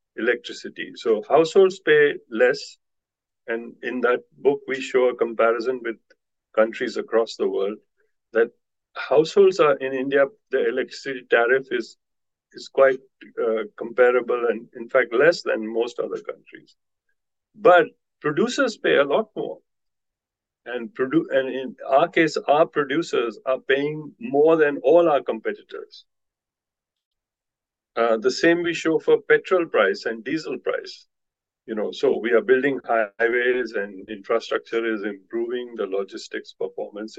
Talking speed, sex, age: 135 wpm, male, 50-69